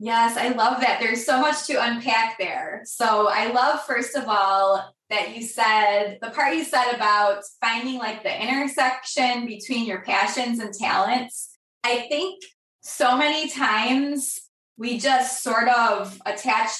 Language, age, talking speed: English, 20-39, 155 wpm